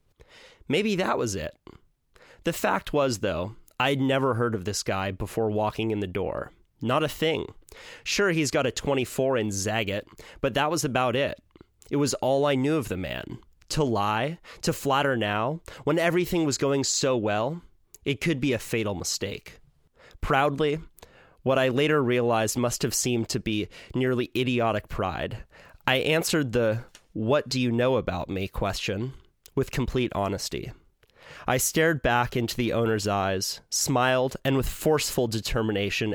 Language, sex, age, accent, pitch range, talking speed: English, male, 30-49, American, 105-140 Hz, 155 wpm